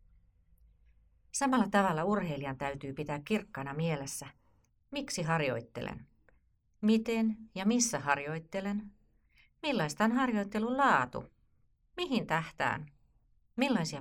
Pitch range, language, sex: 125-190 Hz, Finnish, female